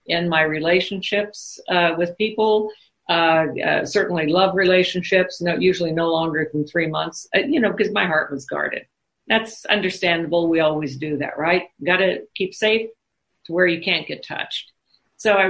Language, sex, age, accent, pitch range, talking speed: English, female, 50-69, American, 155-185 Hz, 175 wpm